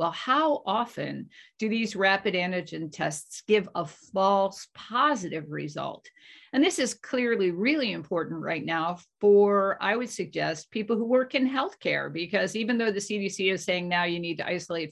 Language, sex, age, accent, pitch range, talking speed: English, female, 50-69, American, 170-215 Hz, 170 wpm